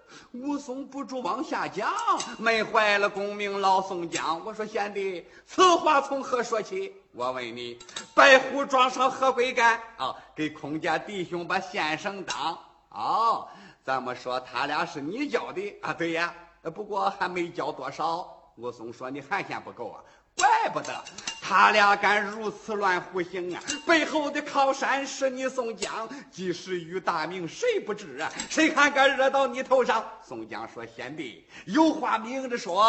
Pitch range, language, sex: 170-270 Hz, Chinese, male